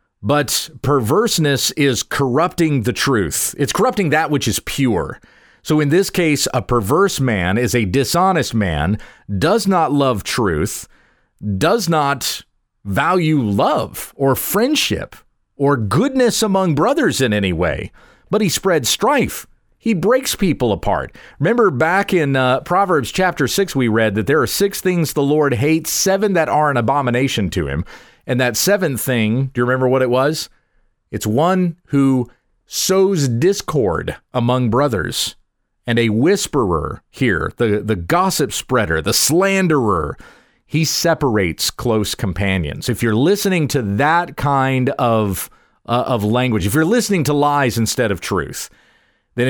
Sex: male